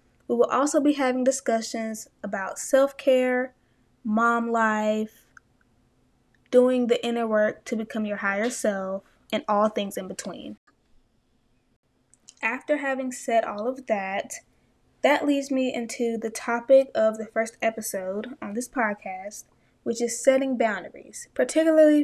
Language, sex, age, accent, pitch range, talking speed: English, female, 20-39, American, 215-260 Hz, 130 wpm